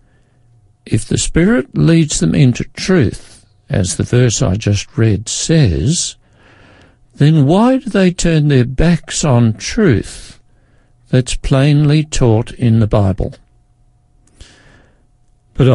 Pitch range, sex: 110-140 Hz, male